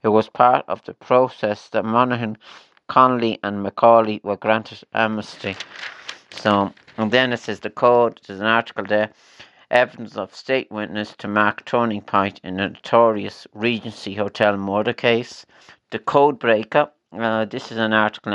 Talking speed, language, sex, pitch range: 160 wpm, English, male, 105-115 Hz